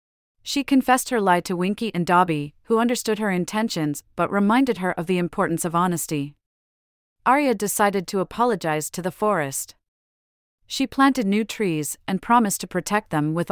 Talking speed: 165 wpm